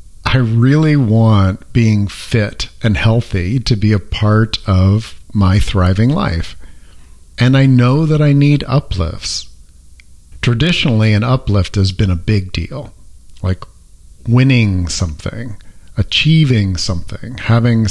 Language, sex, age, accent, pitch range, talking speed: English, male, 50-69, American, 90-125 Hz, 120 wpm